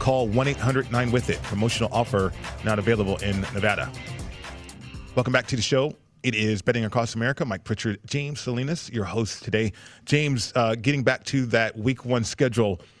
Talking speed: 155 wpm